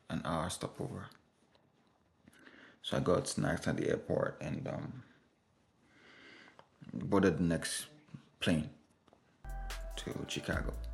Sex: male